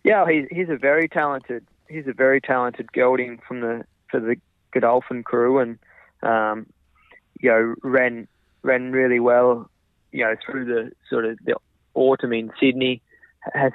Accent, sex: Australian, male